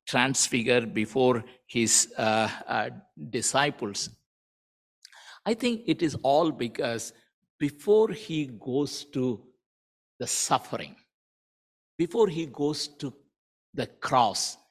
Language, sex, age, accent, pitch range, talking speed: English, male, 60-79, Indian, 115-165 Hz, 100 wpm